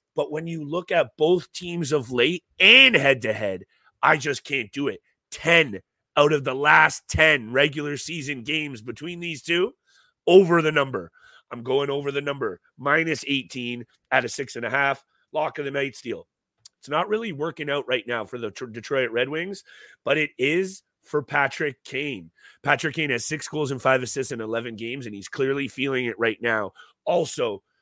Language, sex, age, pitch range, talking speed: English, male, 30-49, 120-150 Hz, 190 wpm